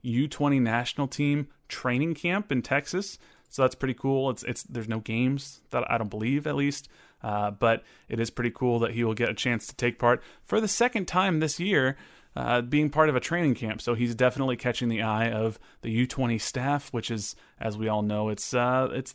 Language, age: English, 30-49